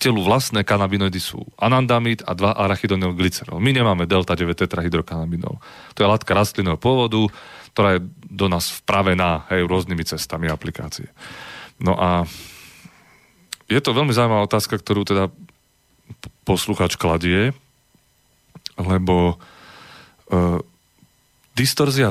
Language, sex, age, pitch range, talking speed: Slovak, male, 30-49, 90-105 Hz, 110 wpm